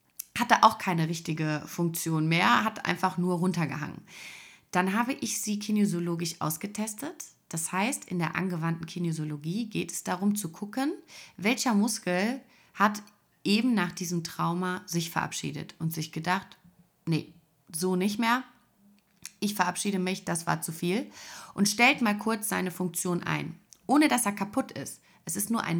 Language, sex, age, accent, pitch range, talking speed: German, female, 30-49, German, 165-210 Hz, 155 wpm